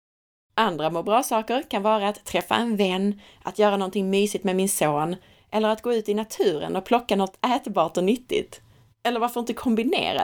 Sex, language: female, Swedish